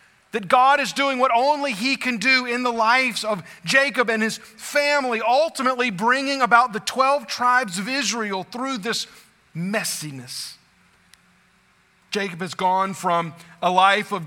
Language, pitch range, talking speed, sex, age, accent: English, 165-230 Hz, 145 wpm, male, 40-59, American